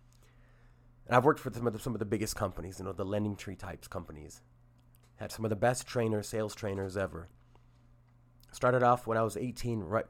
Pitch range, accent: 105-120 Hz, American